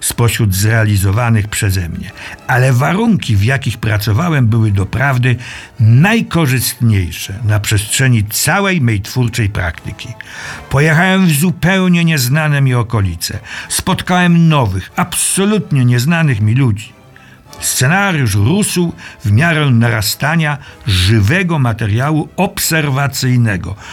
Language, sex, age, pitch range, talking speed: Polish, male, 60-79, 105-145 Hz, 95 wpm